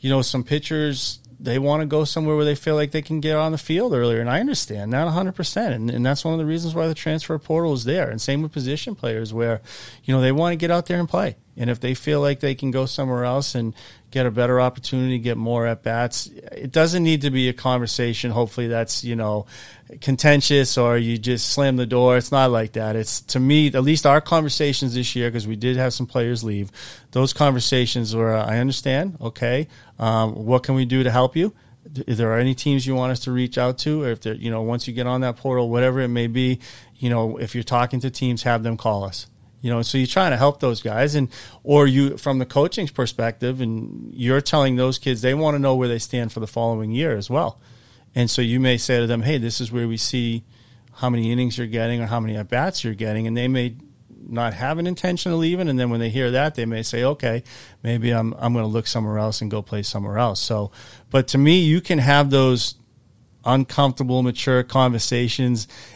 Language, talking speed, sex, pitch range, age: English, 235 wpm, male, 115-140 Hz, 30-49